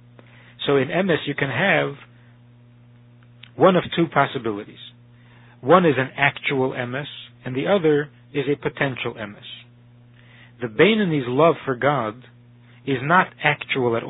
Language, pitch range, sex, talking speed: English, 120-150 Hz, male, 130 wpm